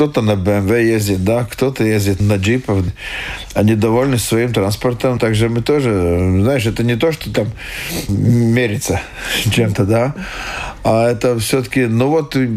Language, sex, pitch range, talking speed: Russian, male, 105-125 Hz, 145 wpm